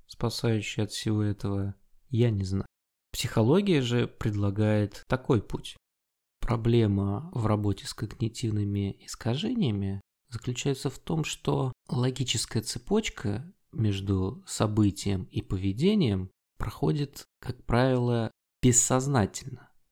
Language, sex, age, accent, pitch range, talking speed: Russian, male, 20-39, native, 100-125 Hz, 95 wpm